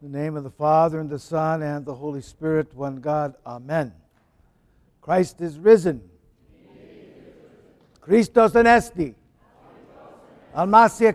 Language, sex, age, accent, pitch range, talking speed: English, male, 60-79, American, 145-195 Hz, 120 wpm